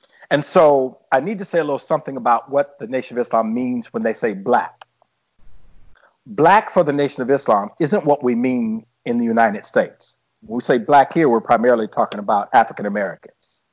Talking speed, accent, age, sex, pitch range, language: 190 wpm, American, 50-69, male, 115-155 Hz, English